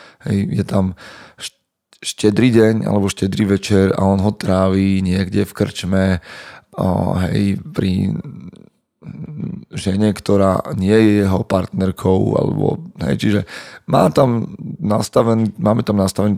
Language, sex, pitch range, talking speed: Slovak, male, 95-105 Hz, 115 wpm